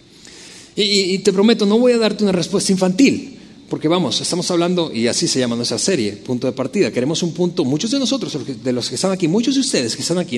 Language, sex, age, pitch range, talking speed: Spanish, male, 40-59, 175-235 Hz, 235 wpm